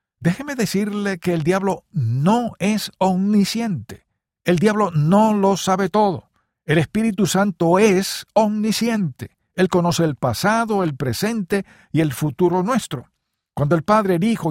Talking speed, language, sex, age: 140 wpm, Spanish, male, 60-79